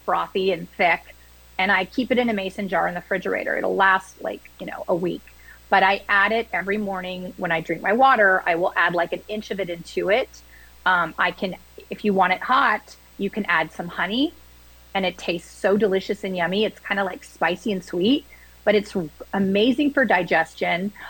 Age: 30-49